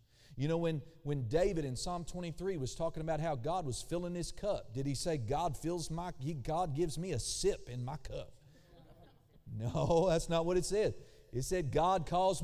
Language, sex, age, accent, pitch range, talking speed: English, male, 40-59, American, 135-185 Hz, 200 wpm